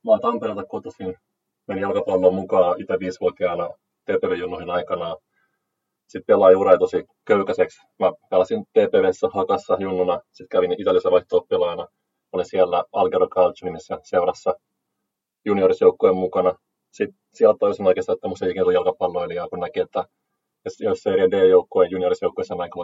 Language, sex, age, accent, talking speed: Finnish, male, 30-49, native, 135 wpm